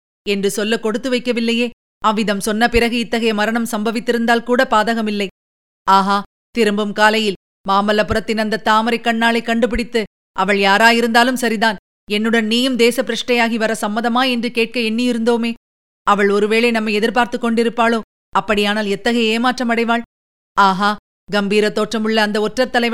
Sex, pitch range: female, 205-245 Hz